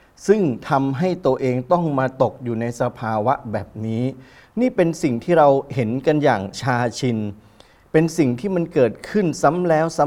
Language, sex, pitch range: Thai, male, 130-175 Hz